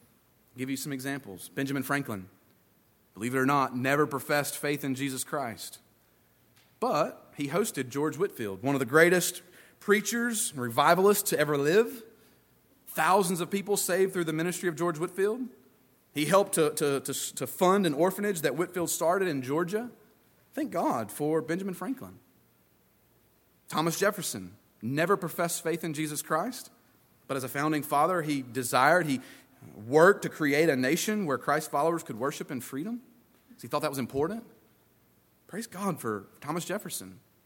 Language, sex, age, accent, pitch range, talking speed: English, male, 40-59, American, 135-190 Hz, 155 wpm